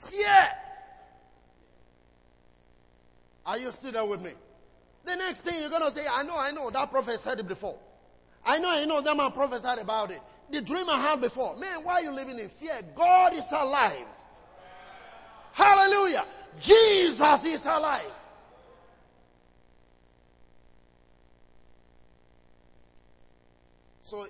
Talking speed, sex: 125 wpm, male